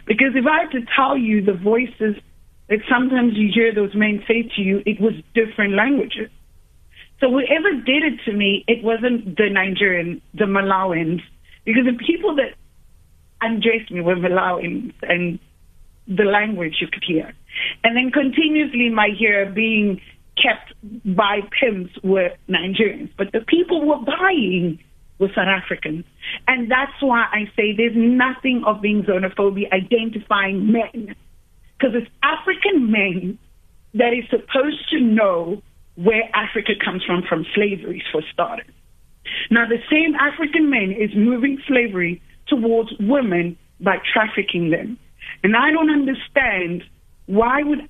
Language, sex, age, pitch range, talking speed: English, female, 30-49, 195-250 Hz, 145 wpm